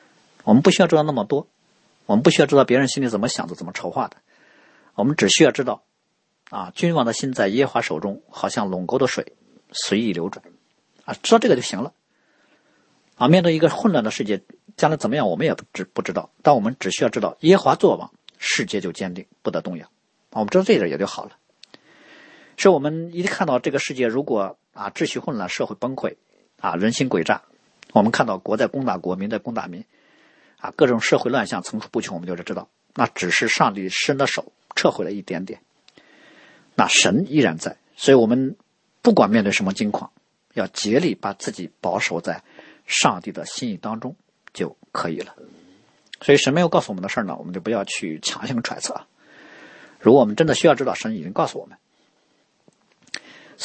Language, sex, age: Chinese, male, 50-69